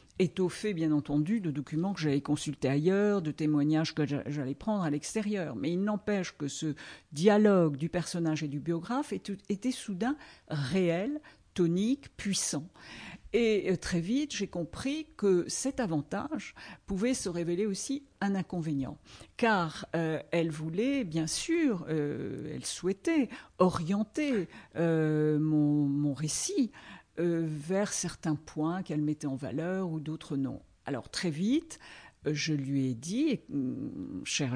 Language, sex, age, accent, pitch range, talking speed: French, female, 50-69, French, 155-205 Hz, 140 wpm